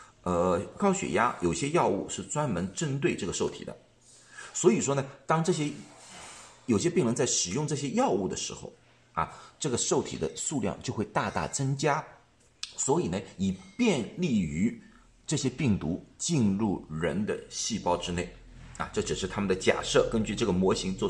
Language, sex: Chinese, male